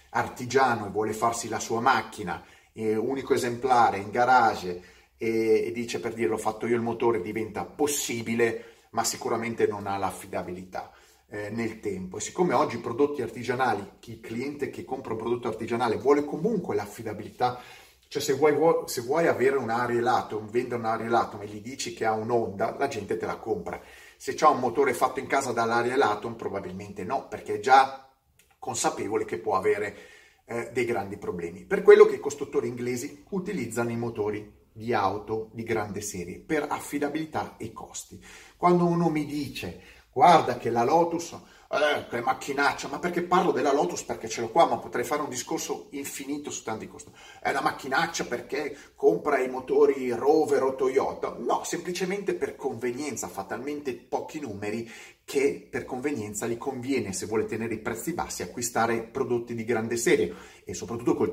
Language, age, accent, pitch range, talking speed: Italian, 30-49, native, 110-175 Hz, 175 wpm